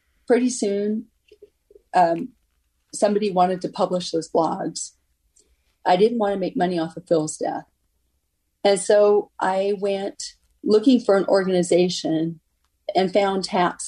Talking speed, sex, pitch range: 130 wpm, female, 160-205 Hz